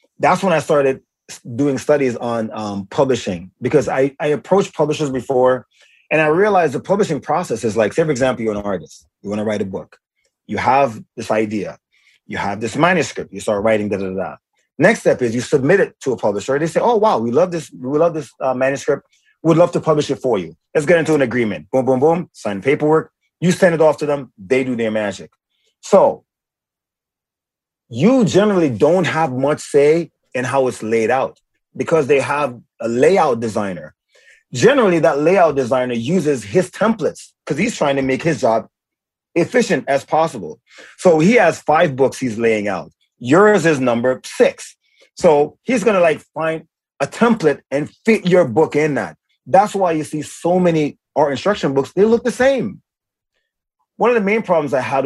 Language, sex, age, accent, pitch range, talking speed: English, male, 30-49, American, 125-170 Hz, 195 wpm